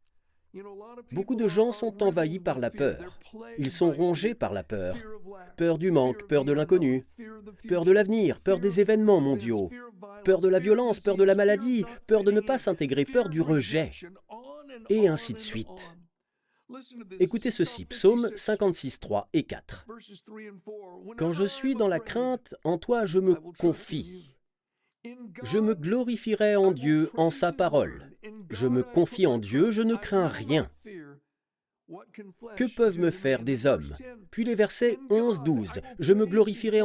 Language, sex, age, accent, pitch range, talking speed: French, male, 40-59, French, 155-220 Hz, 155 wpm